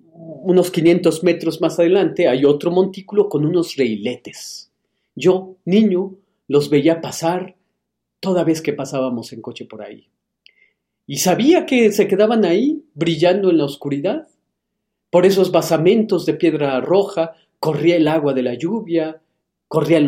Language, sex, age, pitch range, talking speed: Spanish, male, 40-59, 140-180 Hz, 140 wpm